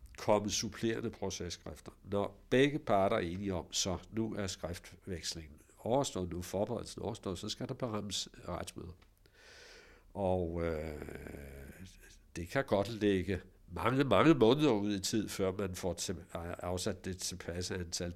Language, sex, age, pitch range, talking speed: Danish, male, 60-79, 90-115 Hz, 140 wpm